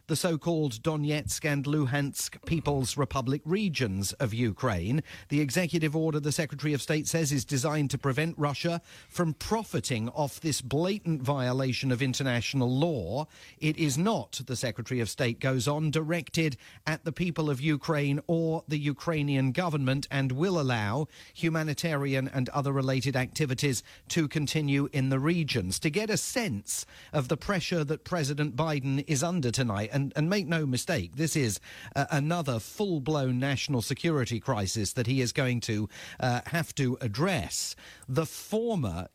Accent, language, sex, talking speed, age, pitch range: British, English, male, 155 wpm, 40-59, 125-160 Hz